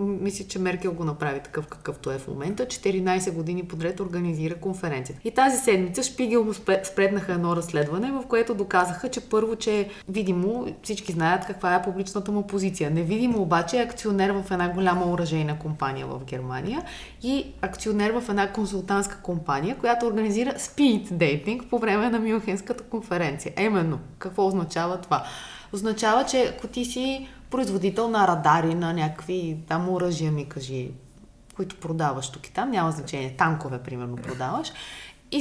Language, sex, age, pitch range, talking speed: Bulgarian, female, 20-39, 160-220 Hz, 155 wpm